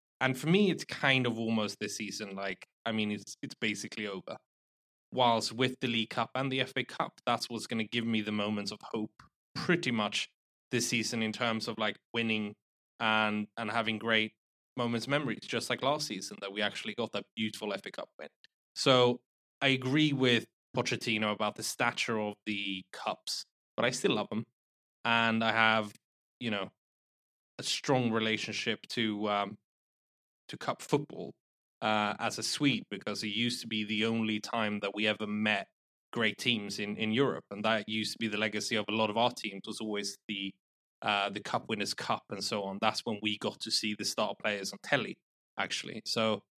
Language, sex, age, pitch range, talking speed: English, male, 20-39, 105-120 Hz, 195 wpm